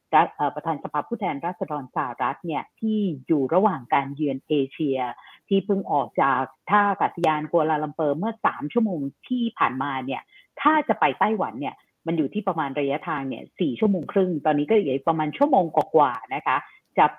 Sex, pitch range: female, 150-200 Hz